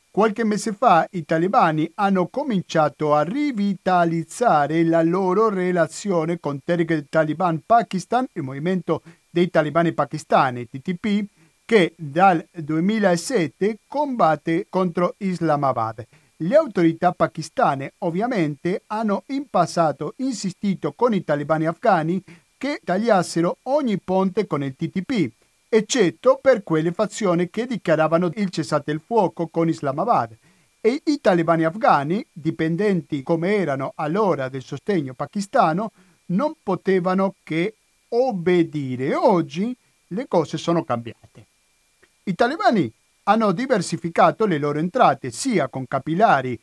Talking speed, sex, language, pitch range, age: 115 wpm, male, Italian, 160-205 Hz, 50-69